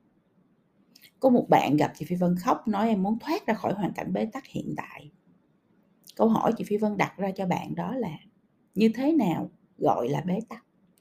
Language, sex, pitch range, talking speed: Vietnamese, female, 180-220 Hz, 205 wpm